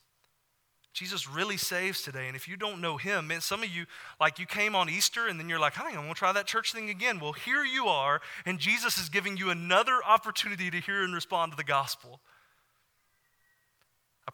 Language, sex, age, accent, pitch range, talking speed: English, male, 30-49, American, 160-215 Hz, 205 wpm